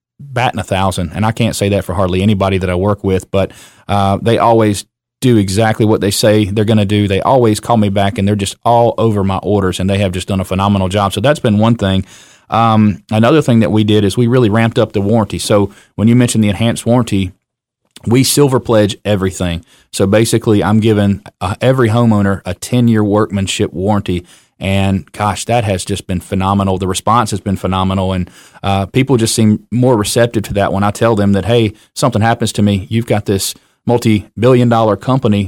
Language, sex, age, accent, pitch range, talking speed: English, male, 30-49, American, 100-115 Hz, 215 wpm